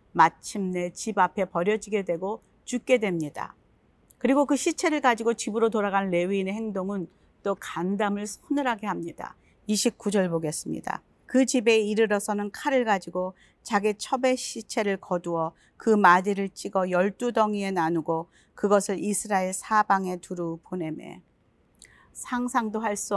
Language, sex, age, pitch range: Korean, female, 40-59, 190-240 Hz